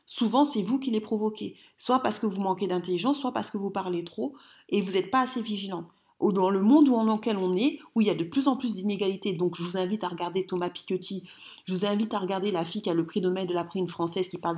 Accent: French